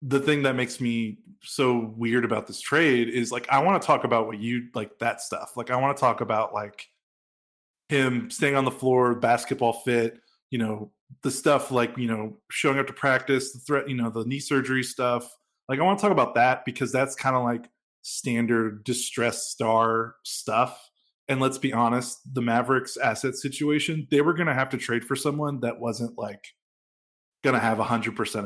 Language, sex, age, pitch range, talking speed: English, male, 20-39, 115-135 Hz, 200 wpm